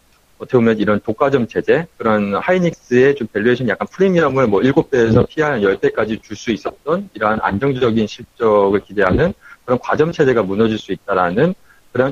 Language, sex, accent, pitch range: Korean, male, native, 110-155 Hz